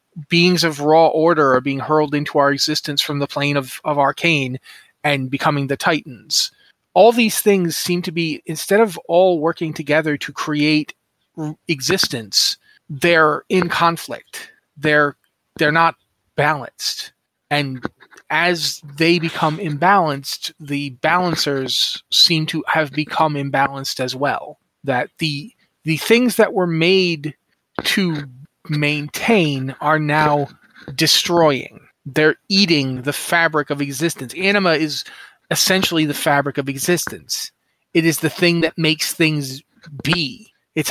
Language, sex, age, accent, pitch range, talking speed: English, male, 30-49, American, 145-170 Hz, 130 wpm